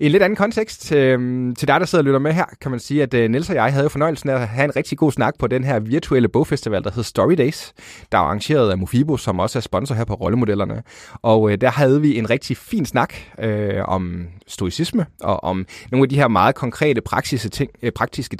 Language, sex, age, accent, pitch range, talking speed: Danish, male, 30-49, native, 105-135 Hz, 225 wpm